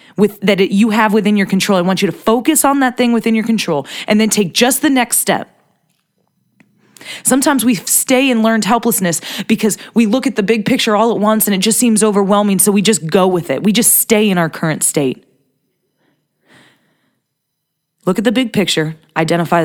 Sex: female